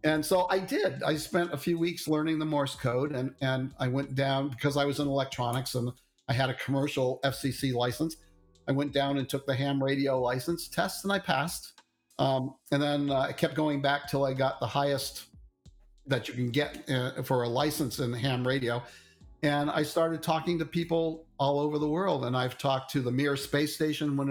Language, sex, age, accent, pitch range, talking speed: English, male, 50-69, American, 130-165 Hz, 210 wpm